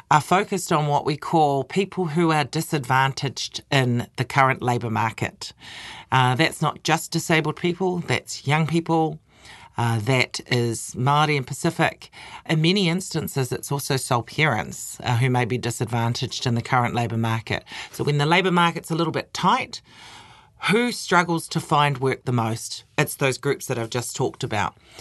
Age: 40-59